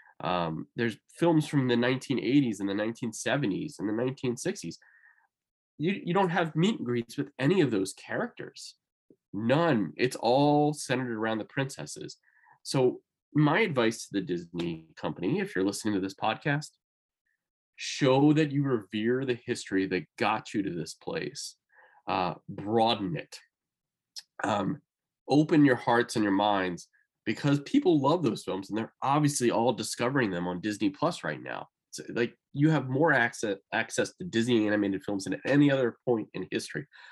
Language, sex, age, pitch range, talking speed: English, male, 20-39, 105-145 Hz, 160 wpm